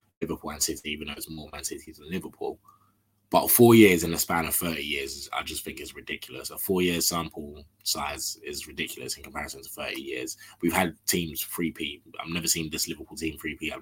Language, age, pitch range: English, 20-39, 80-105 Hz